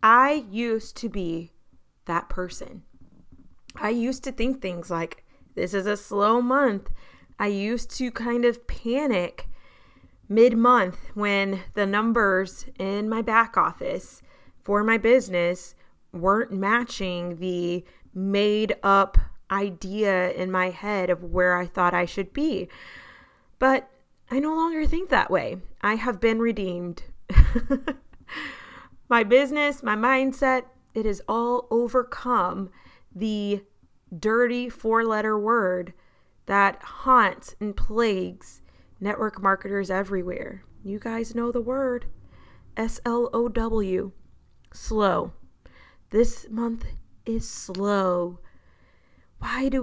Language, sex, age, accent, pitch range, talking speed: English, female, 20-39, American, 190-240 Hz, 115 wpm